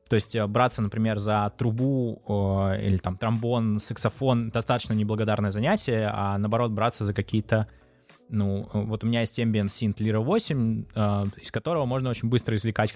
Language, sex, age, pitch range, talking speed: Russian, male, 20-39, 105-130 Hz, 160 wpm